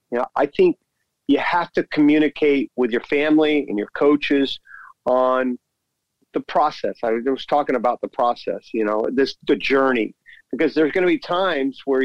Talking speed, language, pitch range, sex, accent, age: 175 wpm, English, 125-155 Hz, male, American, 40-59